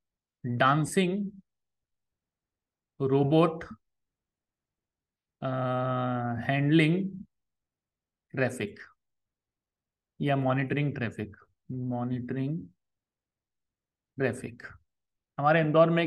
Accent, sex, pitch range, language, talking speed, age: native, male, 130-165 Hz, Hindi, 50 wpm, 30-49